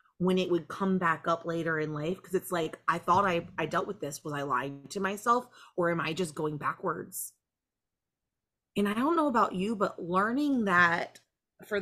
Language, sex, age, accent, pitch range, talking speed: English, female, 30-49, American, 170-225 Hz, 205 wpm